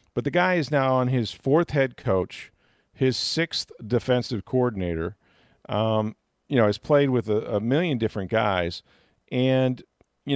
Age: 50-69